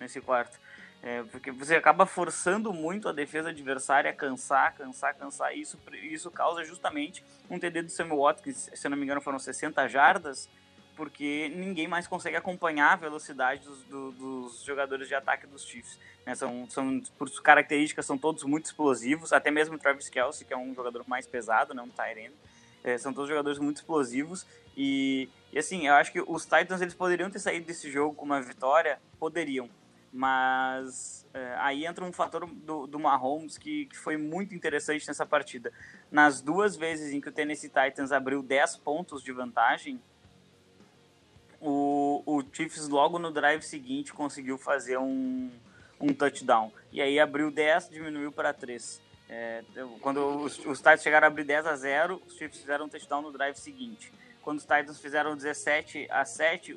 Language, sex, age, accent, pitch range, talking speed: English, male, 20-39, Brazilian, 135-160 Hz, 180 wpm